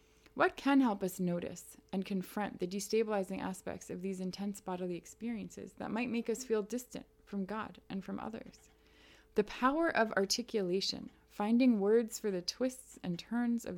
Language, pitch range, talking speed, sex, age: English, 185-235 Hz, 165 wpm, female, 20-39